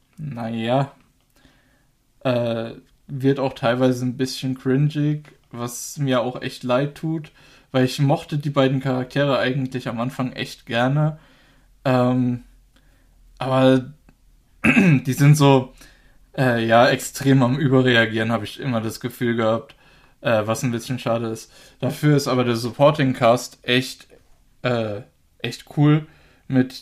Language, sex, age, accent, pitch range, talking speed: German, male, 20-39, German, 120-135 Hz, 125 wpm